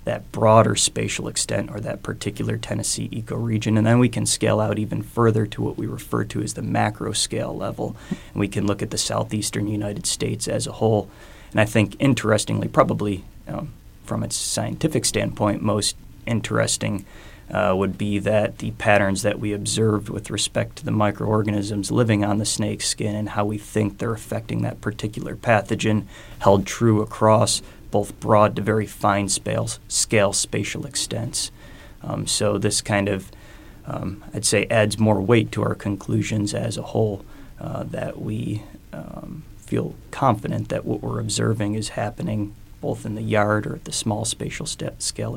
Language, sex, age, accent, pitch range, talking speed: English, male, 20-39, American, 105-115 Hz, 170 wpm